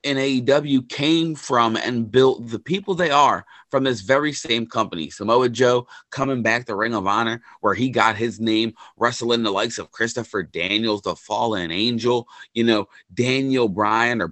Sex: male